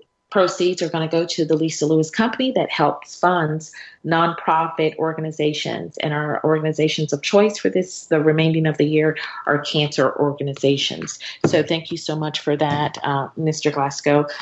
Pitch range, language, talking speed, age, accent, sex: 155-175 Hz, English, 165 wpm, 40-59, American, female